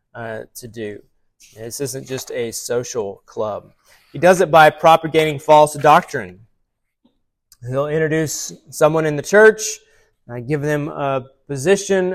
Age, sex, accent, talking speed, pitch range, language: 30-49, male, American, 135 wpm, 120-150 Hz, English